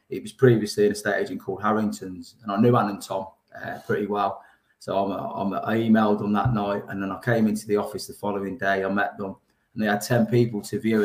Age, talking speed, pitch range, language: 20-39, 245 wpm, 100-115 Hz, English